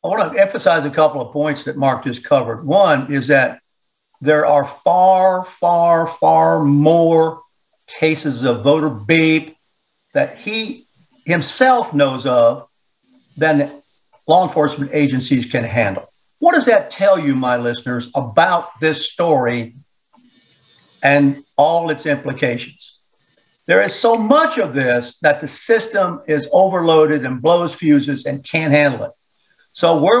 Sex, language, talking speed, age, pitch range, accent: male, English, 140 wpm, 60-79, 140-175 Hz, American